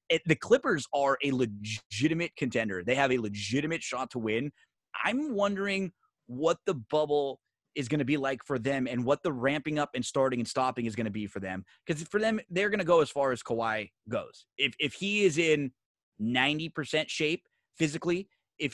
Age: 20-39